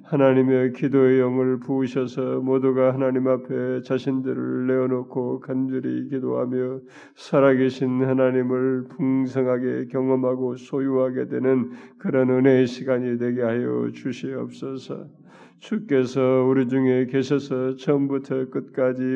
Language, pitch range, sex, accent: Korean, 125-135 Hz, male, native